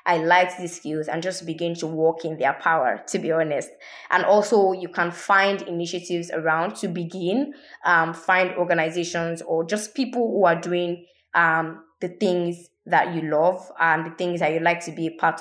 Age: 20-39